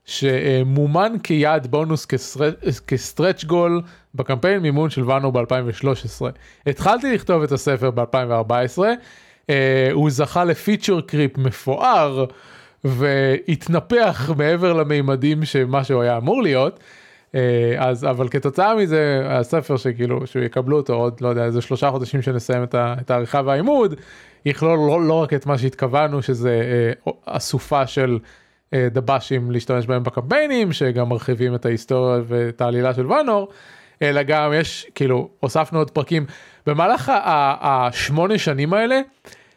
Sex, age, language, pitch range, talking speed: male, 20-39, Hebrew, 130-160 Hz, 130 wpm